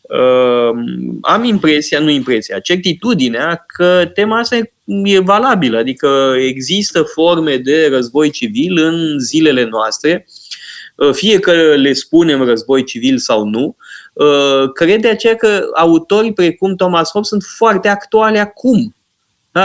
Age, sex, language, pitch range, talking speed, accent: 20-39, male, Romanian, 145-200 Hz, 125 wpm, native